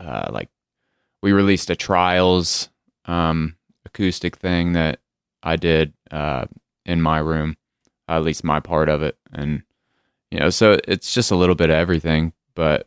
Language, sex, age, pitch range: English, male, 20-39, 80-95 Hz